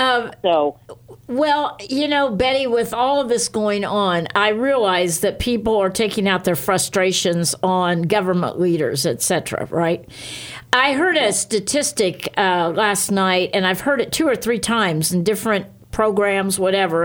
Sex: female